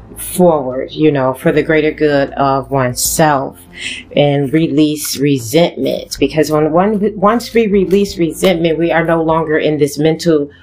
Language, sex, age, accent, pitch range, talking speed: English, female, 30-49, American, 160-200 Hz, 145 wpm